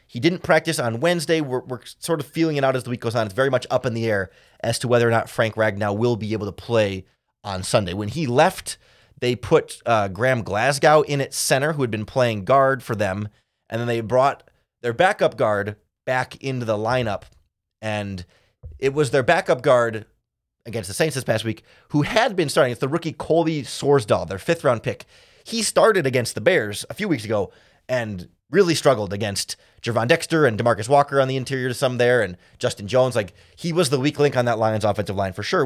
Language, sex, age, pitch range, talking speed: English, male, 30-49, 110-140 Hz, 220 wpm